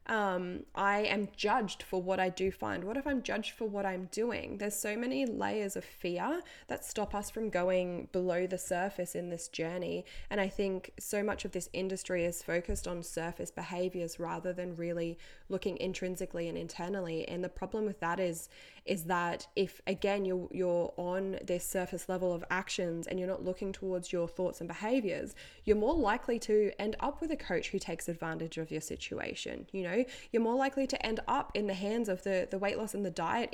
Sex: female